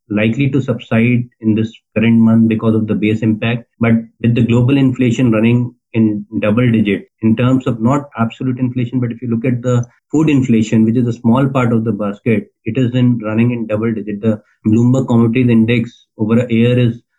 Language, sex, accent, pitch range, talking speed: English, male, Indian, 110-125 Hz, 205 wpm